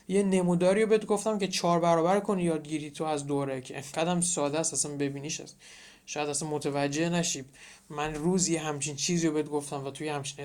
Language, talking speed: Persian, 195 wpm